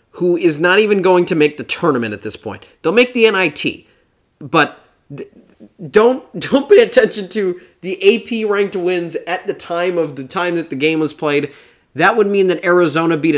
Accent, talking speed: American, 195 wpm